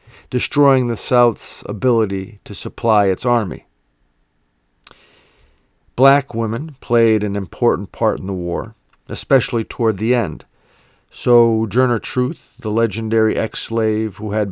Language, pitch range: English, 105-120 Hz